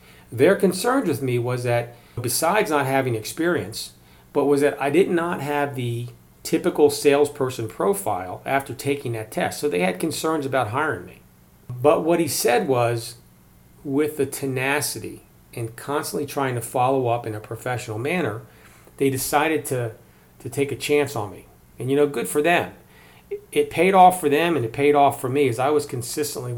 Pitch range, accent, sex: 115-145 Hz, American, male